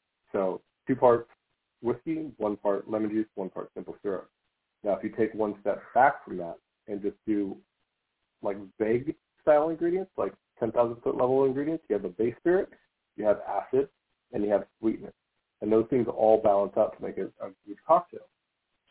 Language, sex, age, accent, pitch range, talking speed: English, male, 40-59, American, 100-115 Hz, 180 wpm